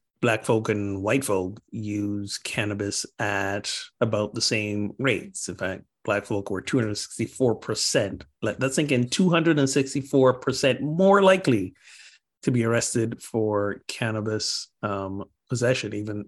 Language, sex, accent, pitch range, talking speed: English, male, American, 100-120 Hz, 150 wpm